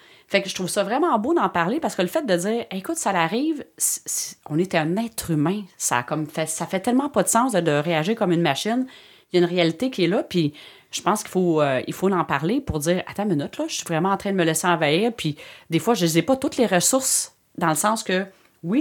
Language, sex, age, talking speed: French, female, 30-49, 280 wpm